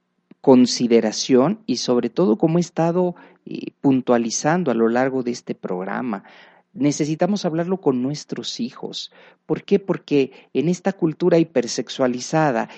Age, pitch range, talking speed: 40-59, 120-180 Hz, 120 wpm